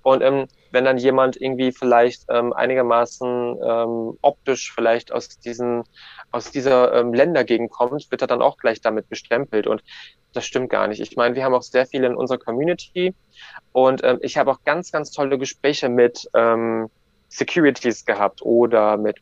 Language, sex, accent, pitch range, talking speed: German, male, German, 120-140 Hz, 175 wpm